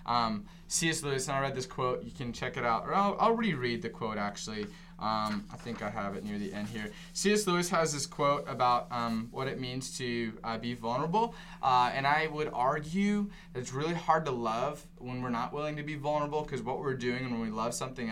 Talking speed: 235 wpm